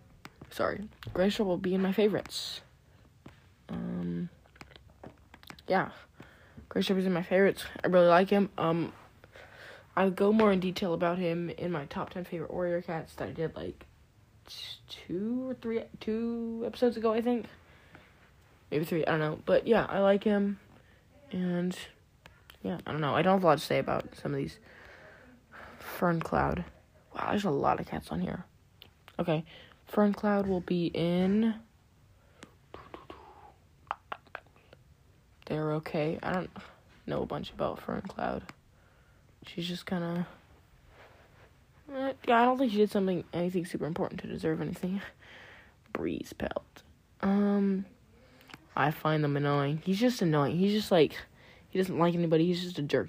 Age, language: 20-39, English